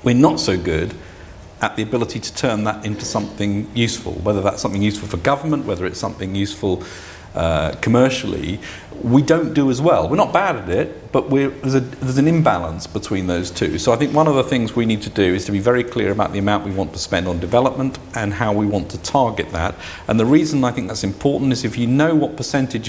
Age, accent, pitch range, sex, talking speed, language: 50-69, British, 90-115 Hz, male, 230 wpm, English